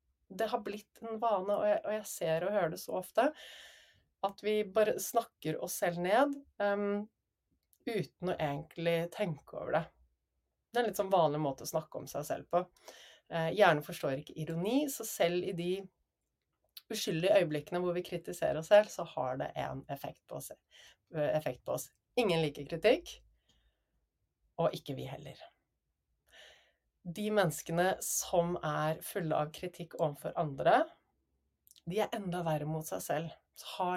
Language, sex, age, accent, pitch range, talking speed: English, female, 30-49, Swedish, 155-200 Hz, 160 wpm